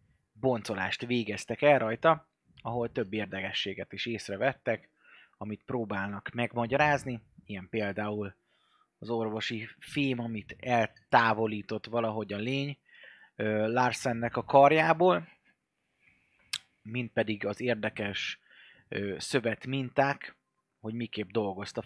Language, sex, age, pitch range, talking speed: Hungarian, male, 30-49, 105-130 Hz, 95 wpm